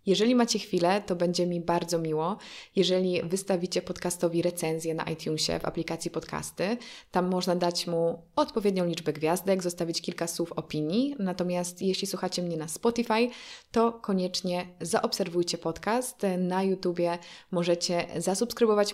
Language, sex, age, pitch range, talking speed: Polish, female, 20-39, 170-195 Hz, 135 wpm